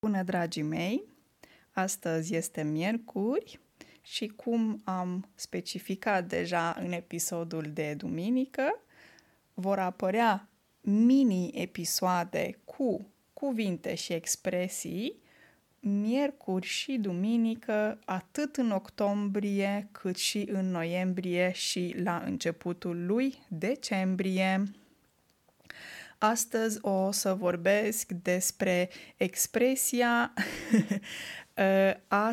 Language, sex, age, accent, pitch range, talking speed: Romanian, female, 20-39, native, 185-230 Hz, 80 wpm